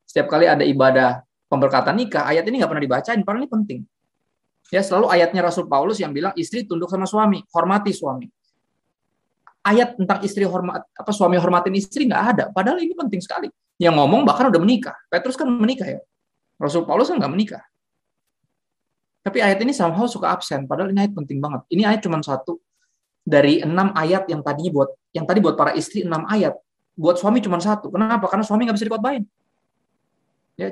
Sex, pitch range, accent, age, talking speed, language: male, 165-210 Hz, native, 20-39, 185 wpm, Indonesian